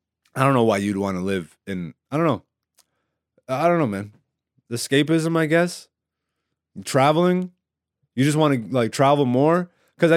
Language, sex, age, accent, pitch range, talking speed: English, male, 30-49, American, 120-165 Hz, 165 wpm